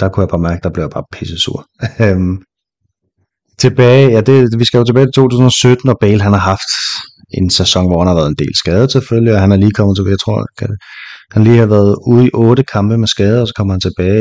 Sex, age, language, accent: male, 30-49, Danish, native